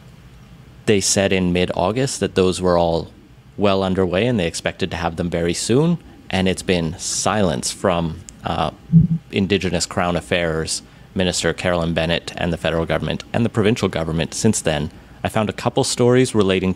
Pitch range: 90-110 Hz